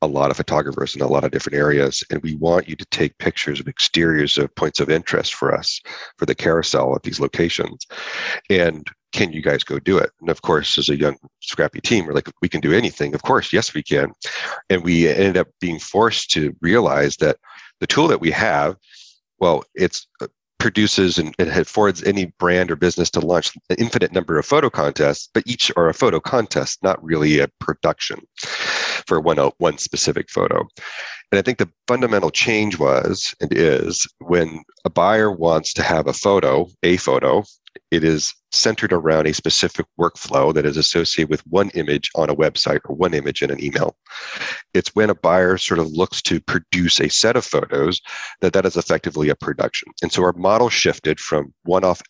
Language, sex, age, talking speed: English, male, 40-59, 195 wpm